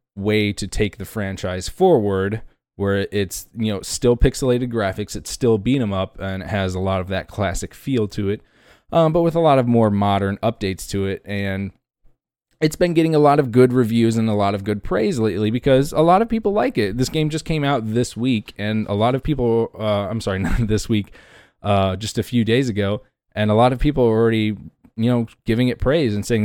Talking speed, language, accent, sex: 225 wpm, English, American, male